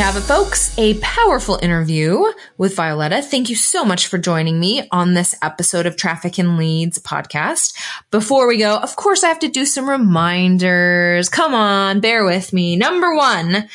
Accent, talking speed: American, 180 wpm